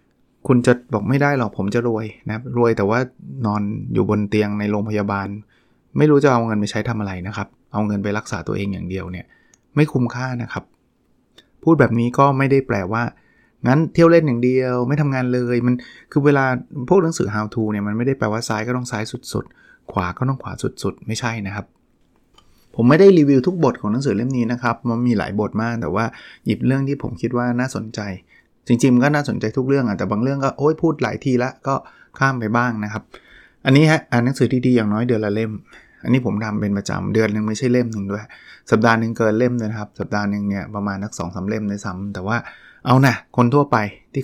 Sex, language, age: male, Thai, 20-39